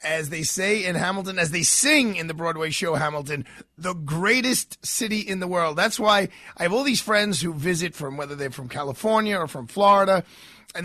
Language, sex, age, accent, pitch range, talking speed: English, male, 30-49, American, 165-200 Hz, 205 wpm